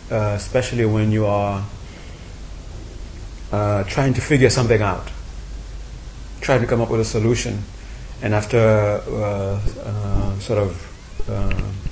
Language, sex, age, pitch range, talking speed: English, male, 30-49, 95-110 Hz, 120 wpm